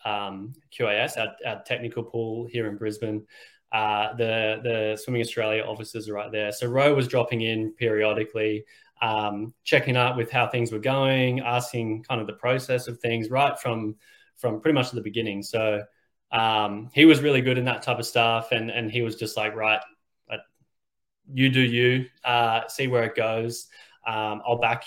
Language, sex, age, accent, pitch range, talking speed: English, male, 10-29, Australian, 110-125 Hz, 180 wpm